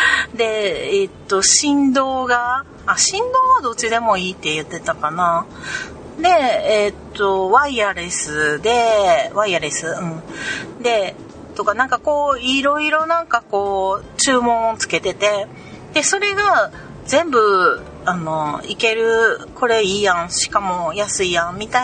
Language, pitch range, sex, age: Japanese, 180-275 Hz, female, 40-59